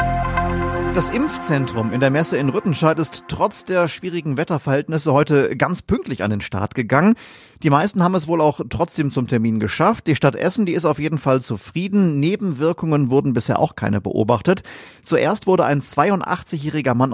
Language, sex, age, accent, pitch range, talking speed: German, male, 30-49, German, 115-165 Hz, 170 wpm